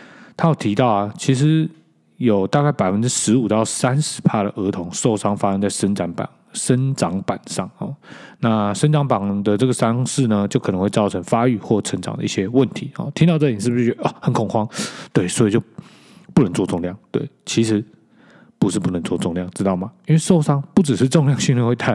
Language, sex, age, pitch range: Chinese, male, 20-39, 100-140 Hz